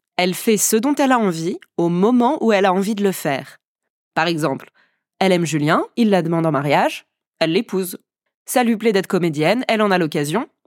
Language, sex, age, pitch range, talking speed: French, female, 20-39, 165-215 Hz, 210 wpm